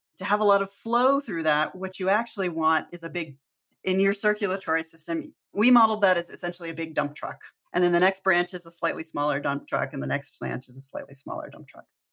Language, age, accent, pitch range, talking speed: English, 40-59, American, 160-205 Hz, 240 wpm